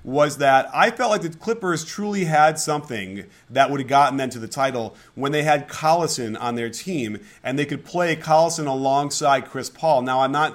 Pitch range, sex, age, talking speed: 120-155 Hz, male, 30-49, 205 wpm